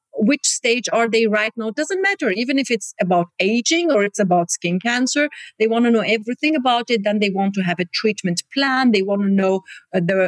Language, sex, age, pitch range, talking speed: English, female, 40-59, 195-255 Hz, 235 wpm